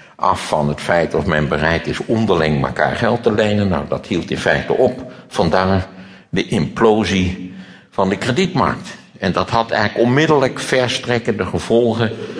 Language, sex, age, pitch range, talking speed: Dutch, male, 60-79, 80-110 Hz, 155 wpm